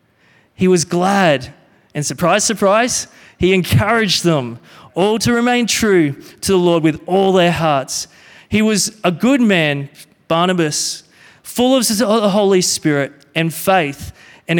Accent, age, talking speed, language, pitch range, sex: Australian, 30-49, 140 wpm, English, 175-225 Hz, male